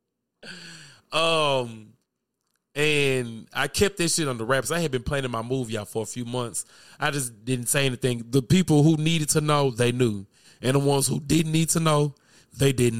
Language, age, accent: English, 20-39, American